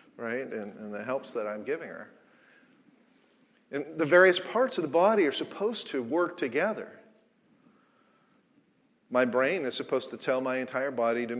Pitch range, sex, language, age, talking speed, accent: 130-205 Hz, male, English, 50-69, 165 wpm, American